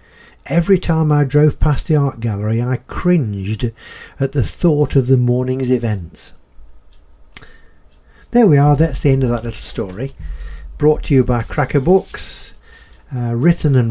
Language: English